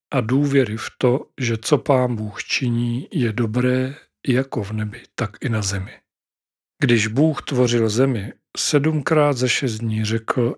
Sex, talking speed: male, 155 wpm